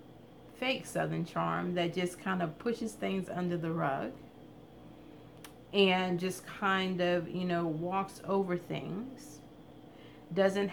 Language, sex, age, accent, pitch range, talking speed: English, female, 30-49, American, 160-195 Hz, 125 wpm